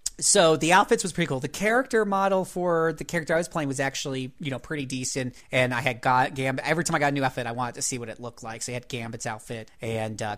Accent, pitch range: American, 130-170 Hz